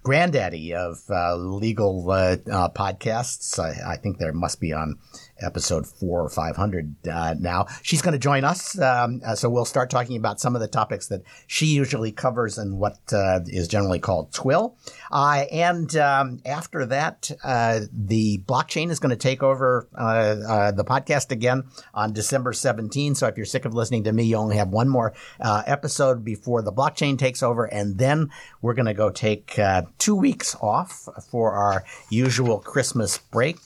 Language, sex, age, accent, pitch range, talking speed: English, male, 50-69, American, 100-130 Hz, 185 wpm